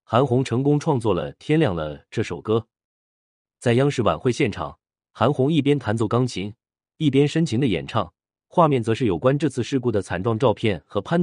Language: Chinese